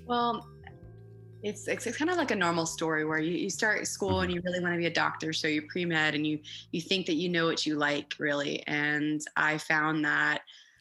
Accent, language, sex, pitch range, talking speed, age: American, English, female, 155-180 Hz, 230 wpm, 20-39